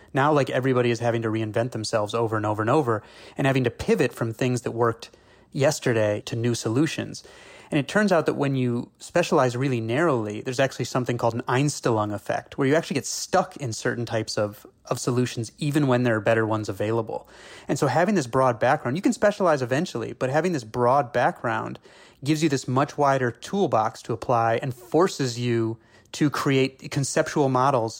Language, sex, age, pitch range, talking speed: English, male, 30-49, 115-135 Hz, 195 wpm